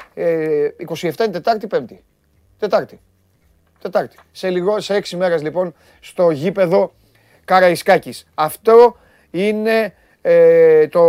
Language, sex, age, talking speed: Greek, male, 30-49, 90 wpm